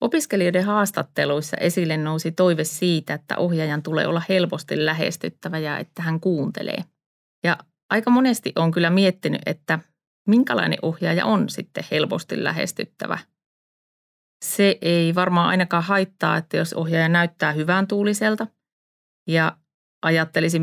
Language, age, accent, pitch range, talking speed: Finnish, 30-49, native, 155-180 Hz, 120 wpm